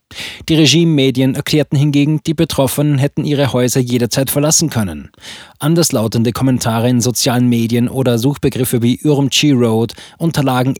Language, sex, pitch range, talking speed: German, male, 120-140 Hz, 130 wpm